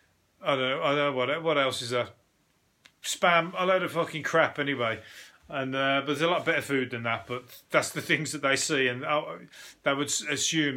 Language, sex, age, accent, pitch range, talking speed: English, male, 40-59, British, 130-155 Hz, 215 wpm